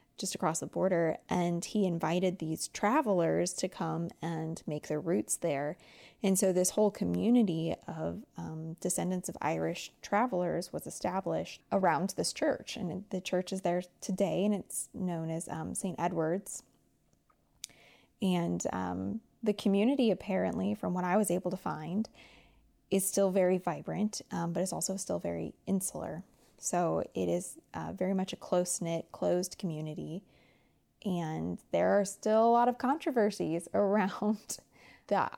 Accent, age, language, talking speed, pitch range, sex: American, 20-39, English, 150 wpm, 160-195 Hz, female